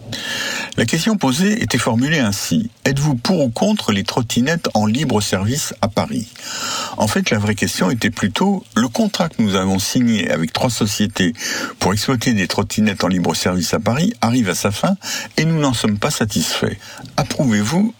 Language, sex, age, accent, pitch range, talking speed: French, male, 60-79, French, 105-160 Hz, 170 wpm